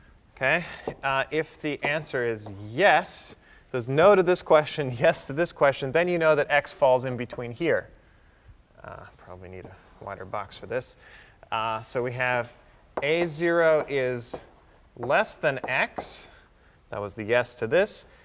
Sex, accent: male, American